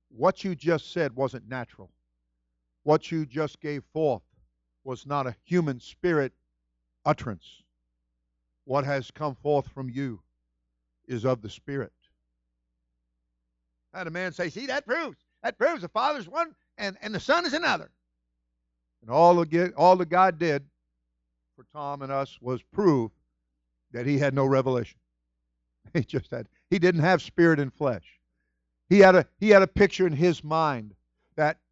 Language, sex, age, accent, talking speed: English, male, 50-69, American, 160 wpm